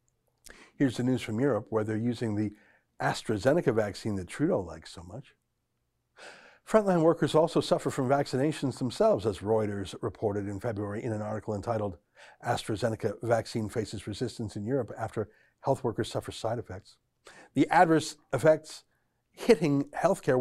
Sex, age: male, 60-79